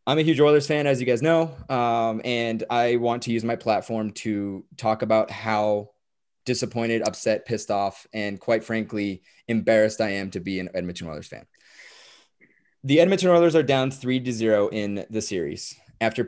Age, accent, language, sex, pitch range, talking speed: 20-39, American, English, male, 105-130 Hz, 180 wpm